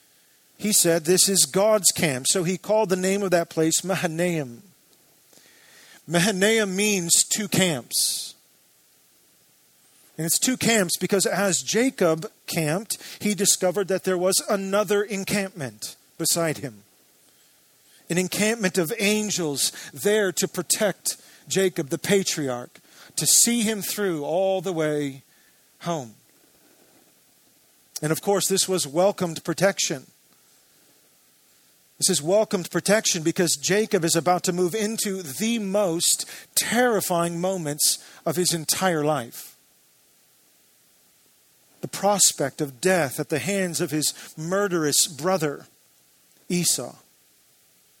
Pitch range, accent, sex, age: 160-200 Hz, American, male, 40-59